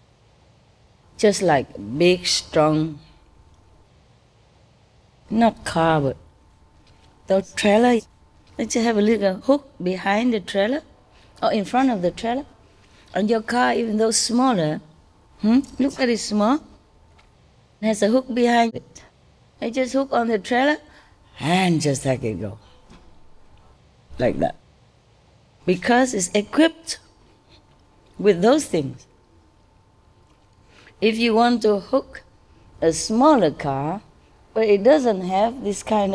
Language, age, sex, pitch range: English, 20-39, female, 145-220 Hz